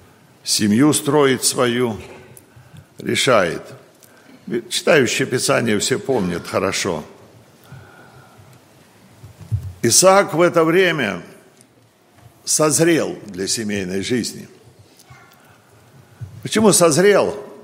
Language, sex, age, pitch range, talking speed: Russian, male, 50-69, 120-165 Hz, 65 wpm